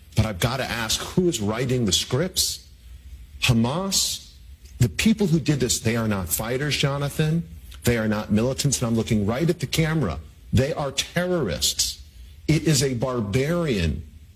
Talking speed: 165 wpm